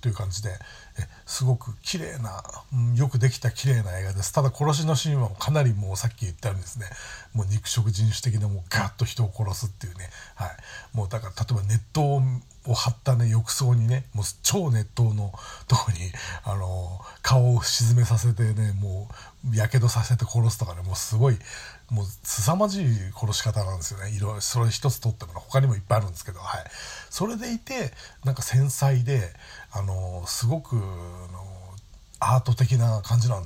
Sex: male